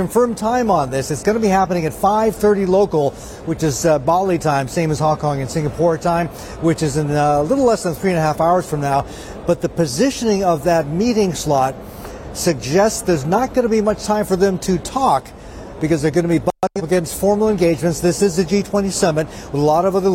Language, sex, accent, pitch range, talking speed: English, male, American, 155-195 Hz, 225 wpm